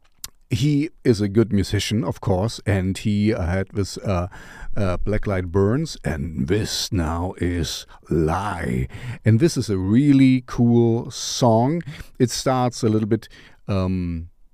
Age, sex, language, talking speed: 50-69, male, English, 135 wpm